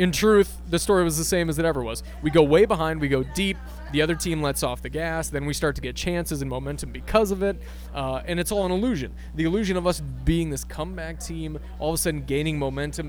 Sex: male